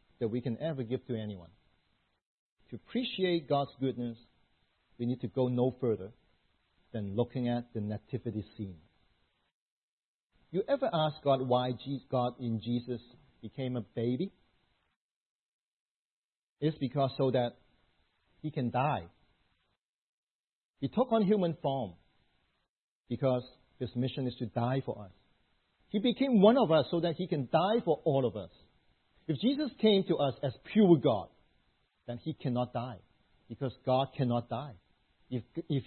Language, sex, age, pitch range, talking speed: English, male, 50-69, 115-160 Hz, 145 wpm